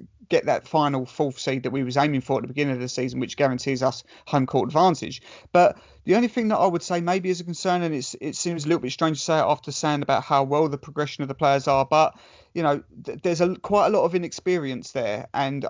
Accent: British